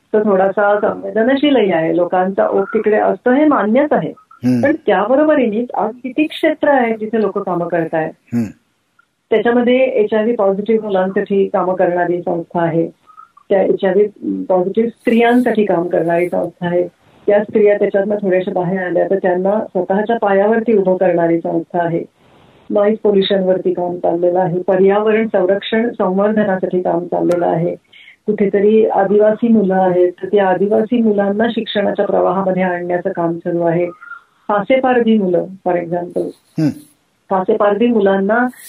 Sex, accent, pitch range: female, native, 180-220 Hz